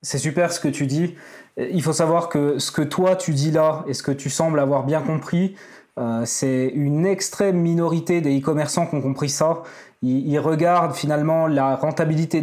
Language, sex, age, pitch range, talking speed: French, male, 20-39, 145-180 Hz, 190 wpm